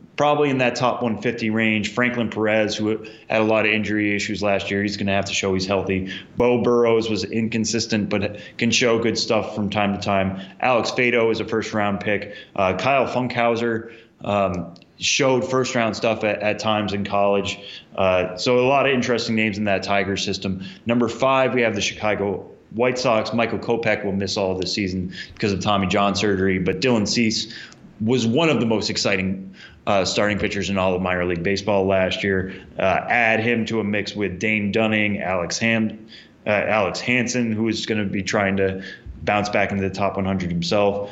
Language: English